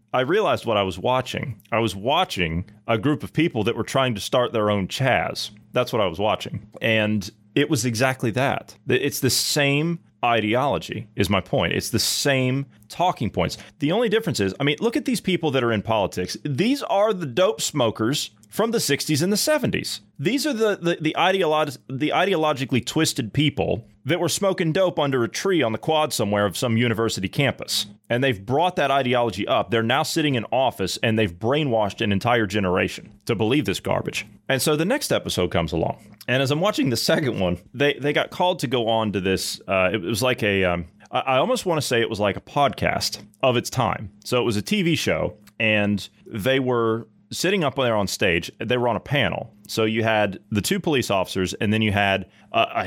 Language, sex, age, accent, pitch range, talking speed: English, male, 30-49, American, 105-150 Hz, 215 wpm